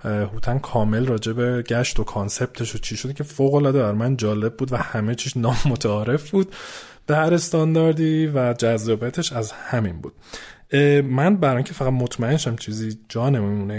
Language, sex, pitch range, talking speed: Persian, male, 105-130 Hz, 170 wpm